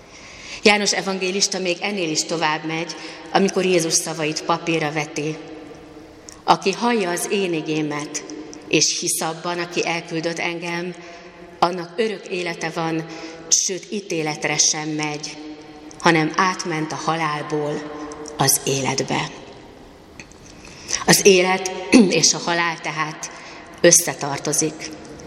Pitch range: 155-175 Hz